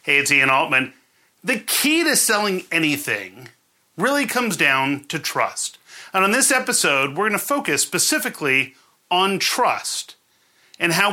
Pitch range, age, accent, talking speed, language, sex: 185-250 Hz, 40-59, American, 145 wpm, English, male